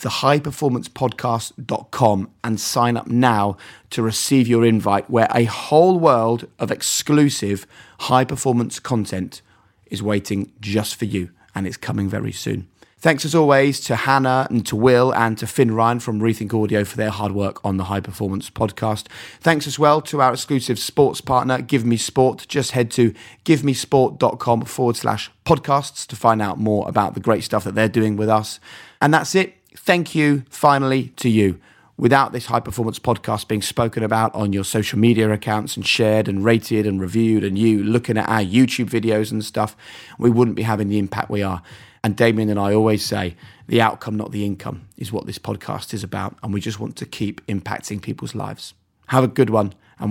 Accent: British